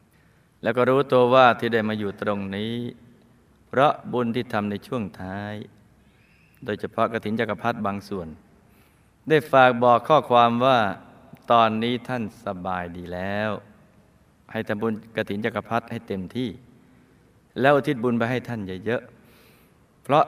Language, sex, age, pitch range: Thai, male, 20-39, 95-120 Hz